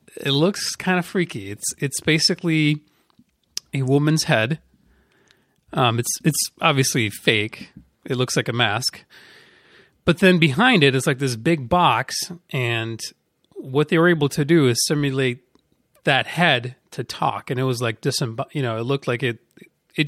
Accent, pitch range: American, 125-160 Hz